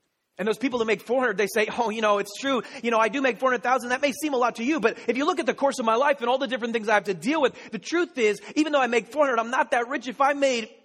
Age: 30-49